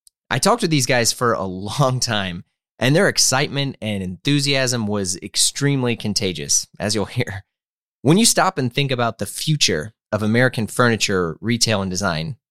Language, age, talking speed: English, 30-49, 165 wpm